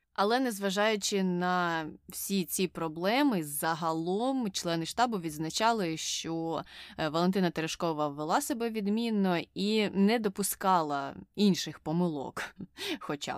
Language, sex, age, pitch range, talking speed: Ukrainian, female, 20-39, 170-210 Hz, 100 wpm